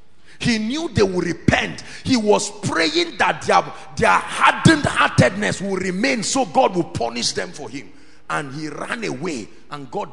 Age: 40-59